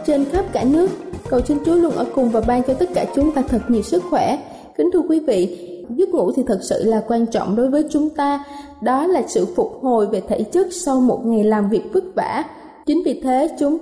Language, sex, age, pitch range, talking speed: Vietnamese, female, 20-39, 235-315 Hz, 245 wpm